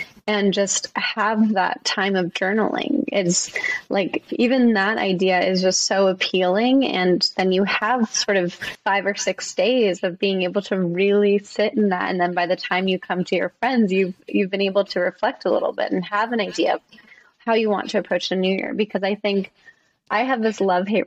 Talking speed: 210 wpm